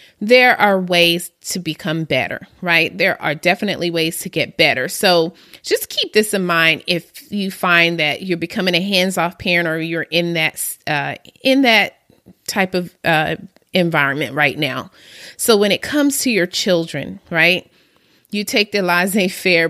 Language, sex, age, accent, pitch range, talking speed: English, female, 30-49, American, 175-220 Hz, 165 wpm